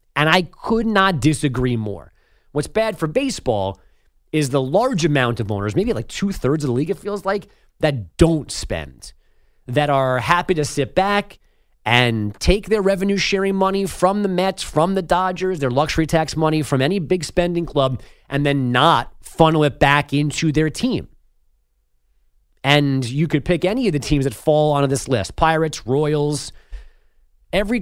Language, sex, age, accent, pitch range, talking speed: English, male, 30-49, American, 130-175 Hz, 170 wpm